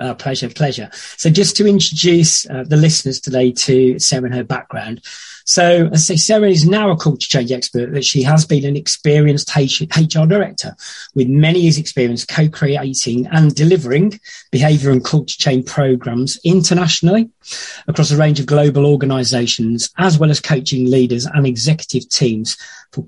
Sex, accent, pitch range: male, British, 130-165 Hz